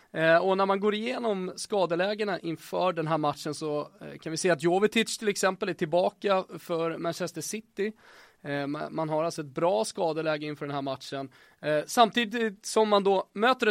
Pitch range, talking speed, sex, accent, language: 160-210 Hz, 165 wpm, male, Swedish, English